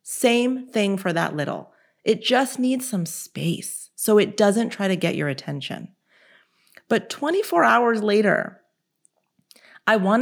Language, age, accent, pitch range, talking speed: English, 30-49, American, 170-230 Hz, 140 wpm